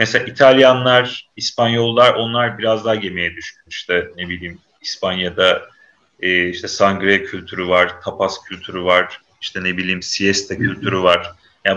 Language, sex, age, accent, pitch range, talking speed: Turkish, male, 40-59, native, 95-130 Hz, 140 wpm